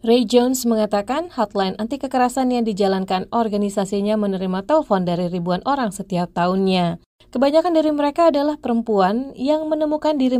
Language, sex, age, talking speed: Indonesian, female, 30-49, 140 wpm